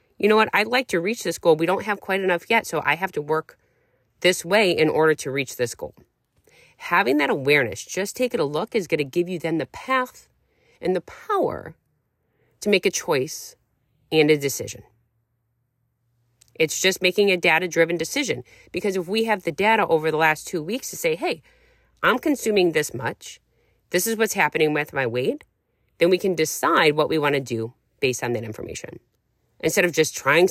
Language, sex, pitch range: English, female, 135-190 Hz